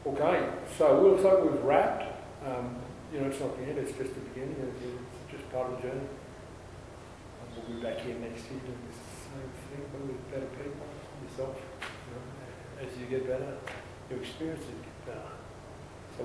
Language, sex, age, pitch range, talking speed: English, male, 40-59, 120-130 Hz, 190 wpm